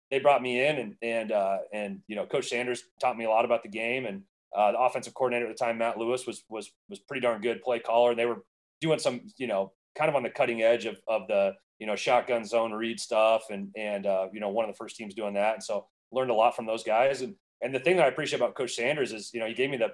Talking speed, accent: 290 wpm, American